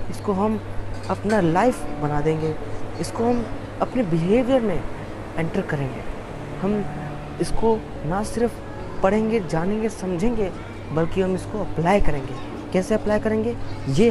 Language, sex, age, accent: Hindi, female, 20-39, native